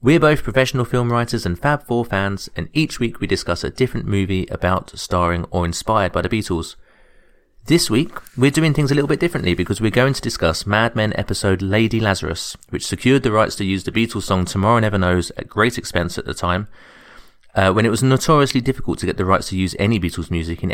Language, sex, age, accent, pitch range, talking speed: English, male, 30-49, British, 90-120 Hz, 225 wpm